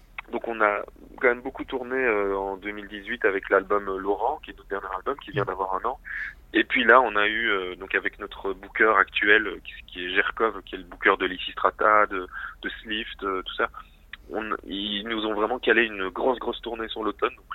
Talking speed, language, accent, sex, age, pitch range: 205 wpm, French, French, male, 30-49, 95-115 Hz